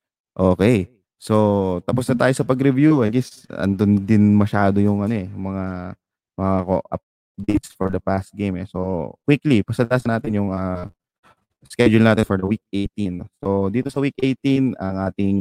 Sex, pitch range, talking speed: male, 95-115 Hz, 160 wpm